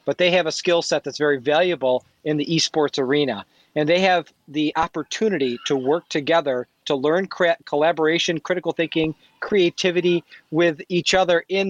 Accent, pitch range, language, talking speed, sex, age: American, 145-175 Hz, English, 165 wpm, male, 40-59